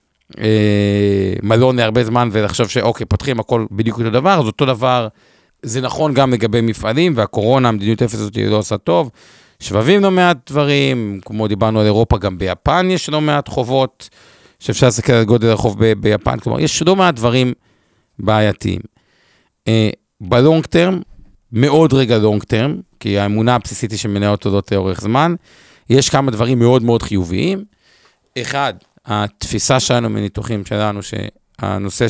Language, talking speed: Hebrew, 145 wpm